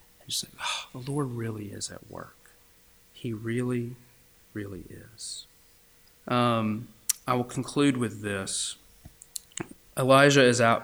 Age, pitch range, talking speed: 30-49, 100-140 Hz, 115 wpm